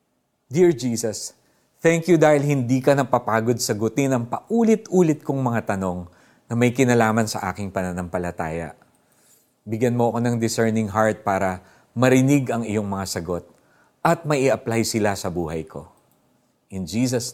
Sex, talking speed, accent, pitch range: male, 140 wpm, native, 105-155 Hz